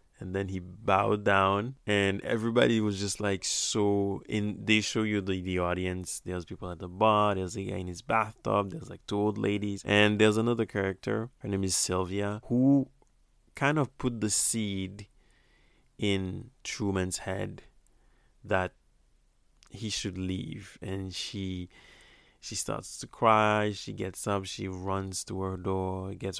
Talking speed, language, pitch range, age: 160 wpm, English, 95-110 Hz, 20-39